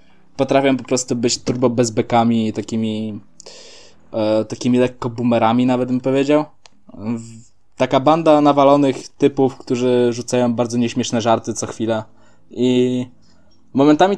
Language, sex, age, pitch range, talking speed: Polish, male, 20-39, 125-165 Hz, 115 wpm